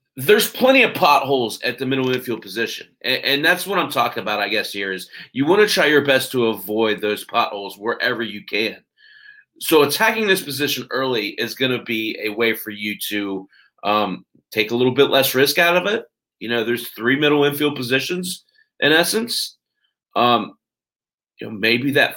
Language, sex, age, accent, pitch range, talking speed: English, male, 30-49, American, 120-180 Hz, 190 wpm